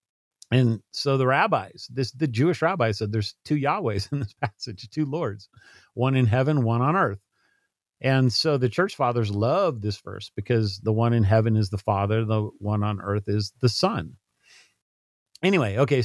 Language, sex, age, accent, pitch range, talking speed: English, male, 40-59, American, 110-140 Hz, 180 wpm